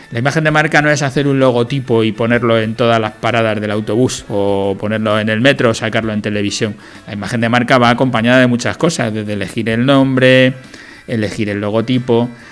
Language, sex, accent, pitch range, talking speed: Spanish, male, Spanish, 110-130 Hz, 200 wpm